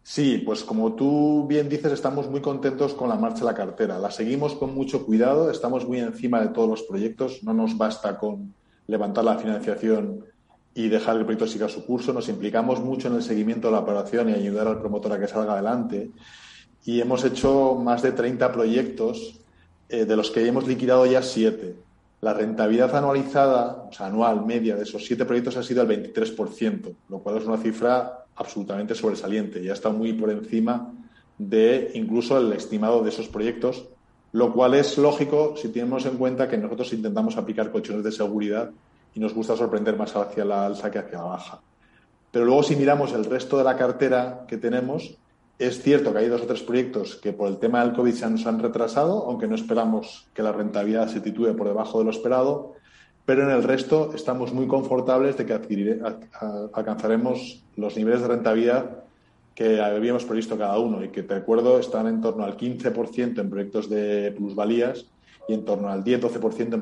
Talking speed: 195 wpm